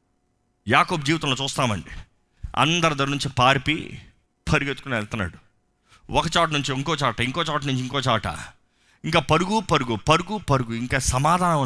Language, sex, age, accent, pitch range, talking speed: Telugu, male, 30-49, native, 115-180 Hz, 135 wpm